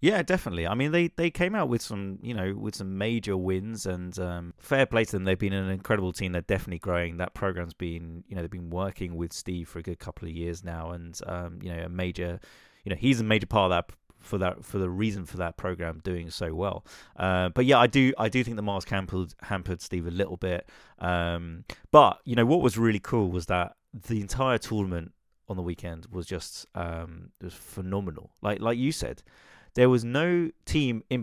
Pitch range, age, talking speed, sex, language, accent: 90-120 Hz, 30-49, 225 wpm, male, English, British